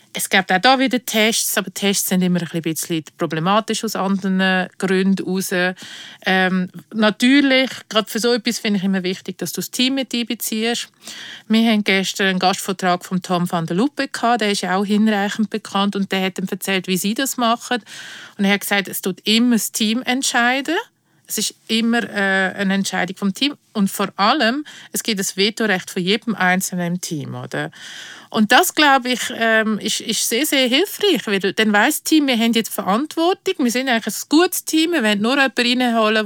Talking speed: 190 wpm